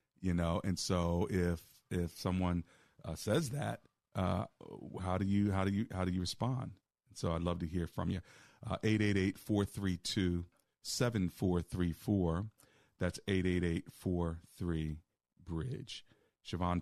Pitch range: 85-105 Hz